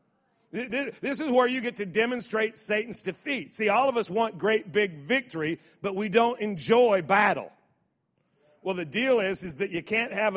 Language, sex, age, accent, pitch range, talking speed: English, male, 40-59, American, 165-220 Hz, 180 wpm